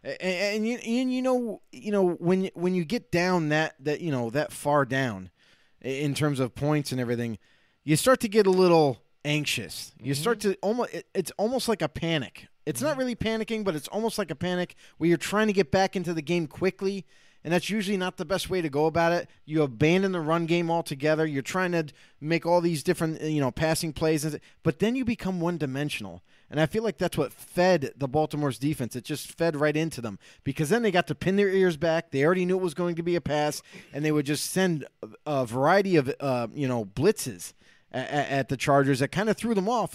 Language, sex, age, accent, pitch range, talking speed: English, male, 20-39, American, 140-185 Hz, 220 wpm